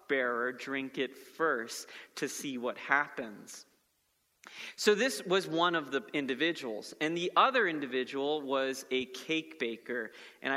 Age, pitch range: 30-49, 135-170 Hz